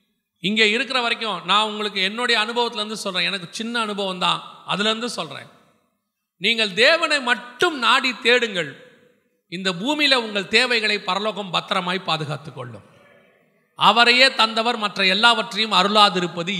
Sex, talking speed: male, 110 wpm